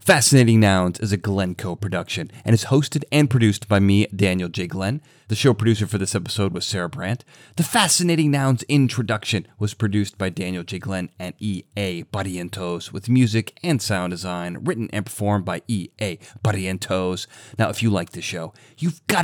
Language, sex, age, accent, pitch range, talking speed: English, male, 30-49, American, 95-135 Hz, 180 wpm